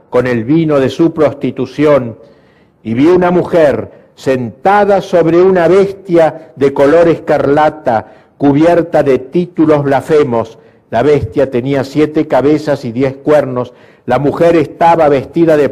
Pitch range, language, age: 120-160 Hz, Spanish, 50-69